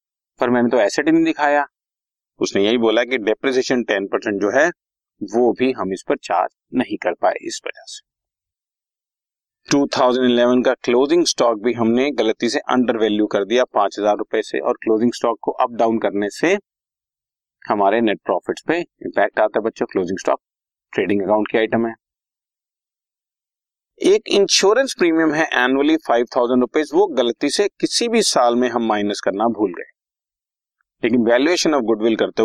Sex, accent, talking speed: male, native, 90 wpm